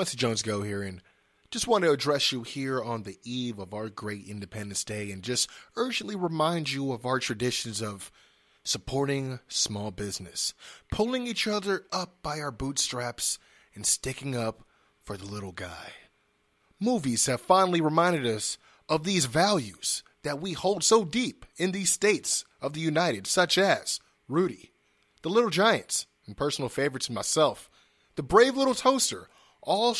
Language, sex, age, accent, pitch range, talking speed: English, male, 30-49, American, 120-185 Hz, 160 wpm